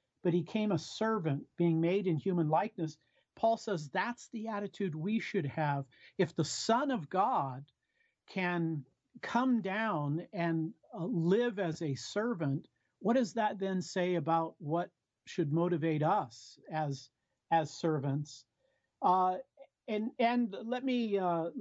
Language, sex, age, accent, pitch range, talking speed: English, male, 50-69, American, 160-205 Hz, 140 wpm